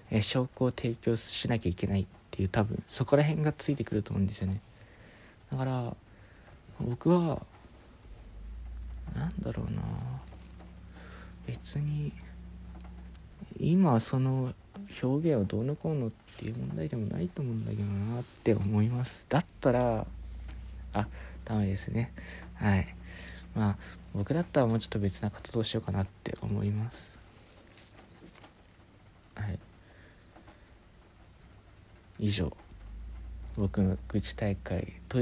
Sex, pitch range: male, 90-115 Hz